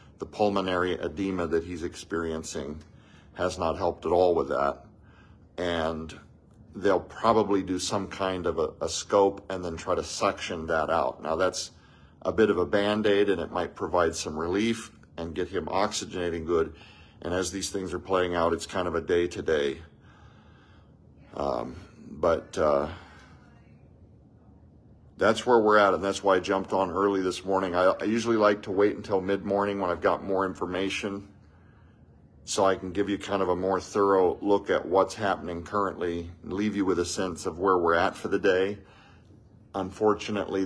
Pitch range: 85-100 Hz